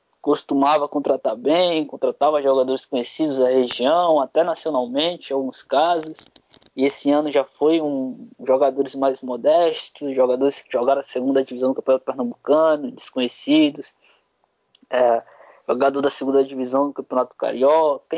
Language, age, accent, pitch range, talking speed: Portuguese, 20-39, Brazilian, 135-165 Hz, 130 wpm